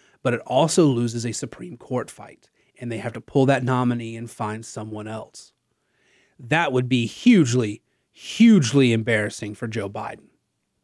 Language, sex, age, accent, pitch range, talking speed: English, male, 30-49, American, 125-170 Hz, 155 wpm